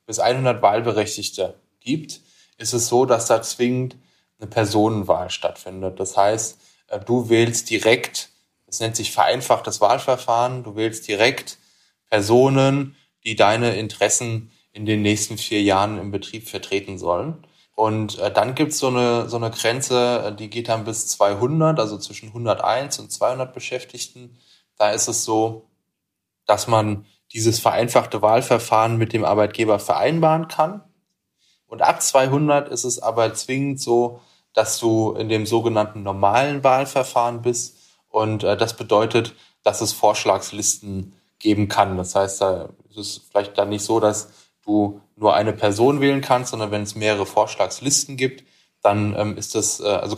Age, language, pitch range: 10-29, German, 105-125 Hz